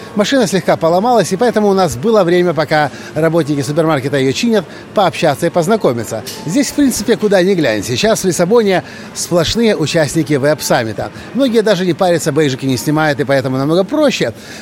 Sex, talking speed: male, 165 wpm